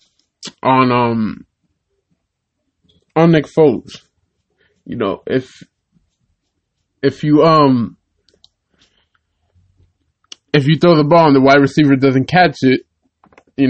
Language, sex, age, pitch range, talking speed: English, male, 20-39, 120-145 Hz, 105 wpm